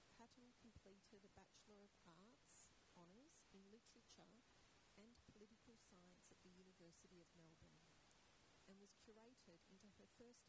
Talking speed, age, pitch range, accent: 130 wpm, 40-59, 180-220 Hz, Australian